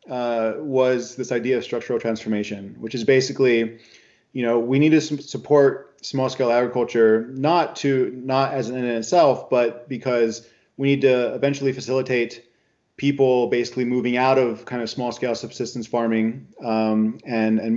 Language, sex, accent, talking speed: English, male, American, 160 wpm